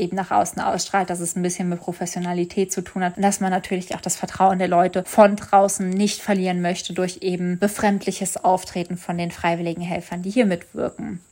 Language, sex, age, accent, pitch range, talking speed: German, female, 20-39, German, 185-215 Hz, 200 wpm